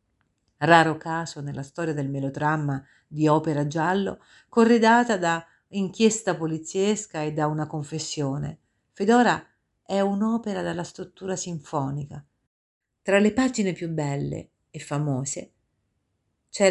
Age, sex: 50-69, female